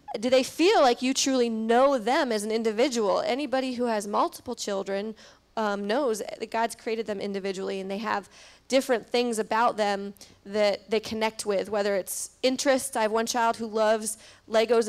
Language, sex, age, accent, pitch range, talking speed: English, female, 30-49, American, 210-245 Hz, 175 wpm